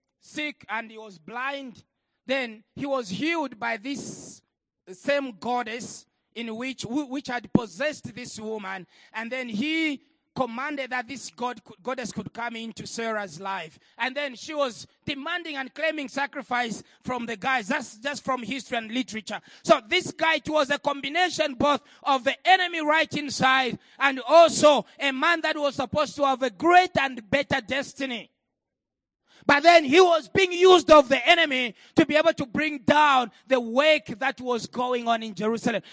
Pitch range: 240-305 Hz